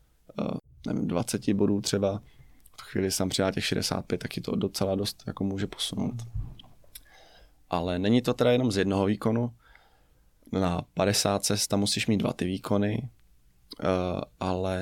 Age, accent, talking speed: 20-39, native, 145 wpm